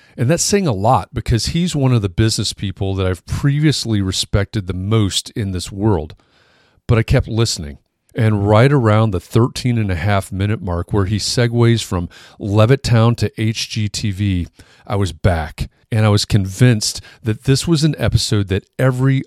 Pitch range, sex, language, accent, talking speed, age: 100-125 Hz, male, English, American, 175 wpm, 40-59